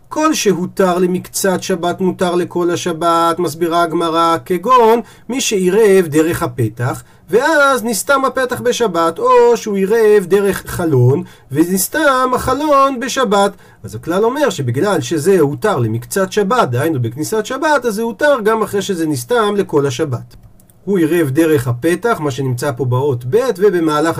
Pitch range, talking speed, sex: 155-225 Hz, 140 wpm, male